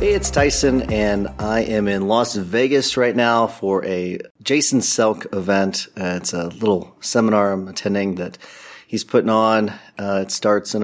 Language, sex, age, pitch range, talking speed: English, male, 30-49, 95-115 Hz, 170 wpm